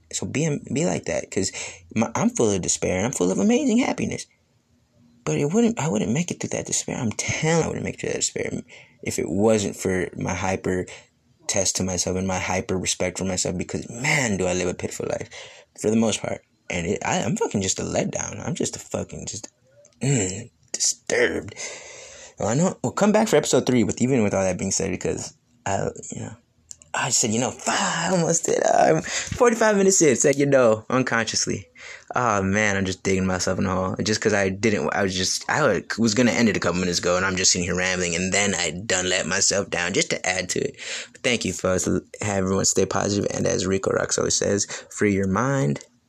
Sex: male